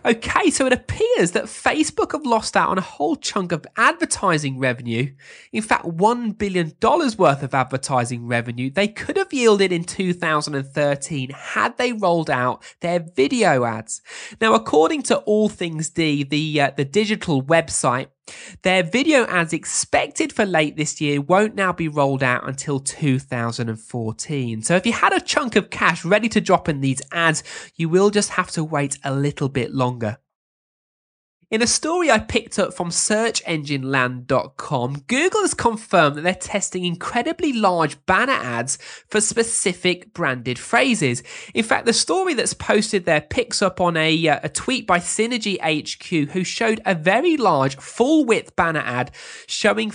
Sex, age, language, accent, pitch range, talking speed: male, 20-39, English, British, 140-220 Hz, 165 wpm